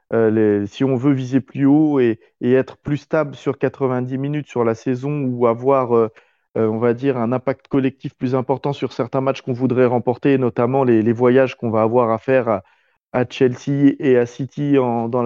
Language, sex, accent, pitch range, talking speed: French, male, French, 120-140 Hz, 210 wpm